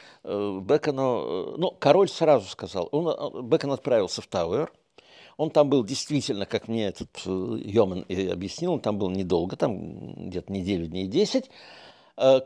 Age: 60-79